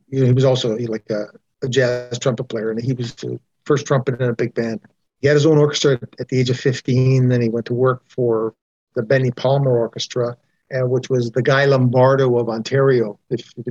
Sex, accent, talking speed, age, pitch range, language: male, American, 215 wpm, 50-69, 120-140 Hz, English